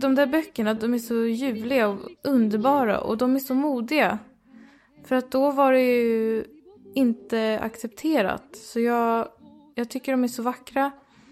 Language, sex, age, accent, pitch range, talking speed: Swedish, female, 20-39, native, 210-260 Hz, 160 wpm